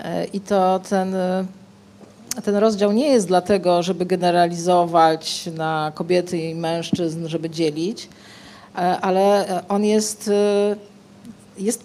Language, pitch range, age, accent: Polish, 175-215 Hz, 40-59, native